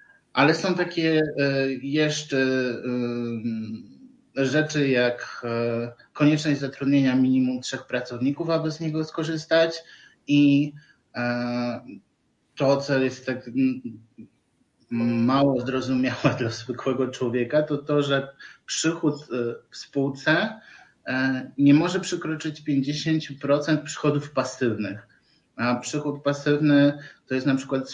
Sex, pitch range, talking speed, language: male, 120-145 Hz, 95 wpm, Polish